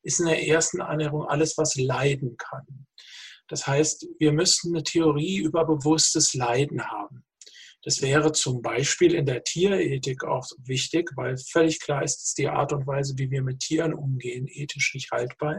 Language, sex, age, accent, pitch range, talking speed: German, male, 50-69, German, 135-165 Hz, 175 wpm